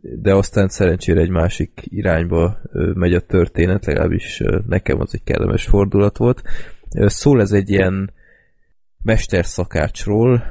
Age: 20-39